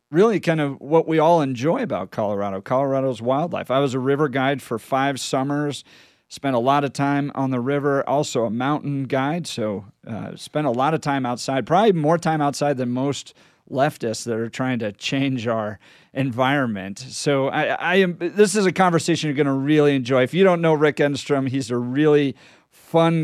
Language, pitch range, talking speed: English, 130-160 Hz, 195 wpm